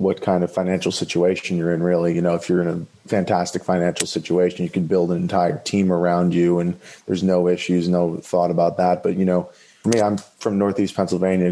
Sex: male